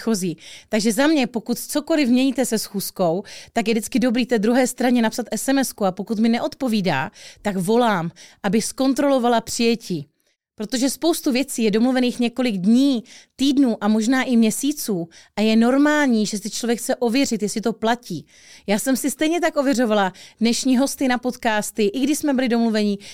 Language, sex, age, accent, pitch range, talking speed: Czech, female, 30-49, native, 210-255 Hz, 170 wpm